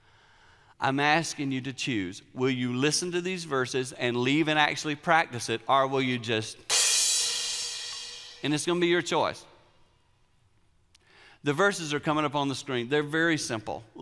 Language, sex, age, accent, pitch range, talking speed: English, male, 40-59, American, 120-165 Hz, 165 wpm